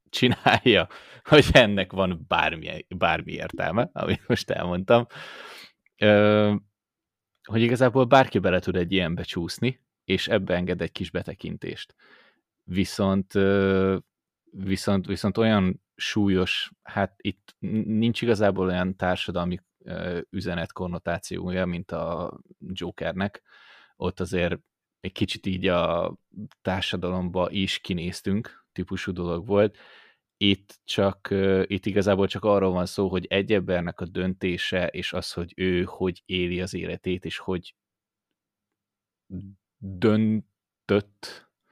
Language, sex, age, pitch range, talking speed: Hungarian, male, 20-39, 90-100 Hz, 110 wpm